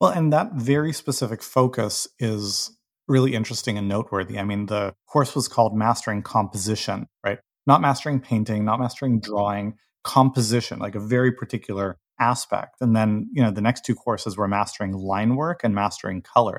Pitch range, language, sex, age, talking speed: 100-125 Hz, English, male, 30-49, 170 wpm